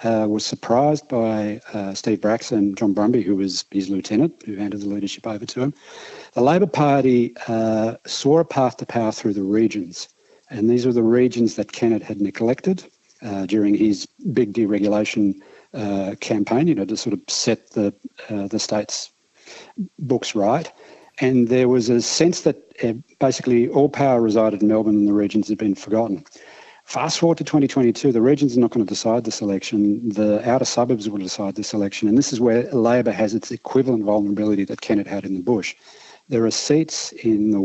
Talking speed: 190 wpm